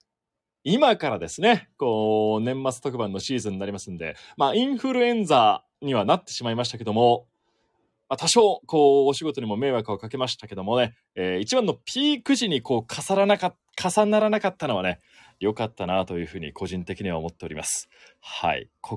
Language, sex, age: Japanese, male, 30-49